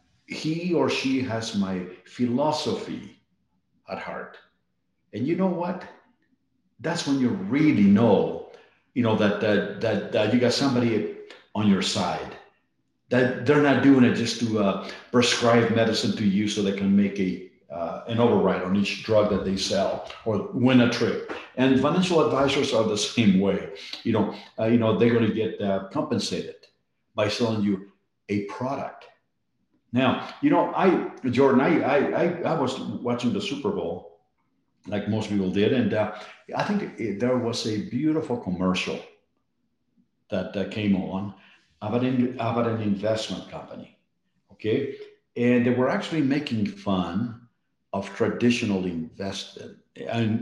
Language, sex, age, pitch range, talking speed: English, male, 50-69, 100-130 Hz, 150 wpm